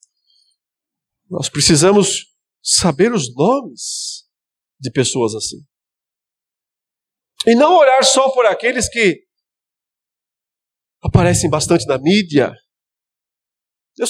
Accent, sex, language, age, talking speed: Brazilian, male, Portuguese, 40-59, 85 wpm